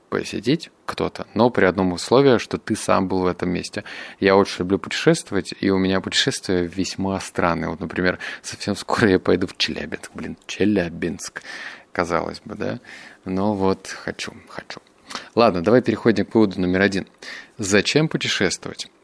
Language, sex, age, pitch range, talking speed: Russian, male, 30-49, 95-115 Hz, 155 wpm